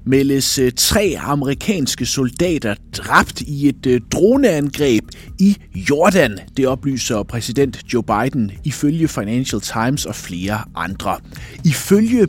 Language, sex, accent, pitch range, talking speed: Danish, male, native, 105-150 Hz, 105 wpm